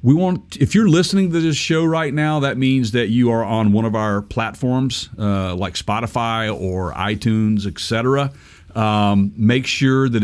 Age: 40-59